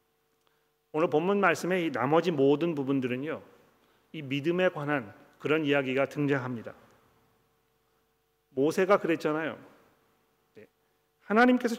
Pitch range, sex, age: 145-185 Hz, male, 40-59